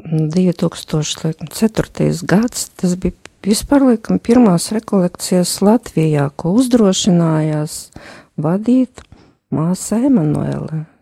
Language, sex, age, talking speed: English, female, 50-69, 75 wpm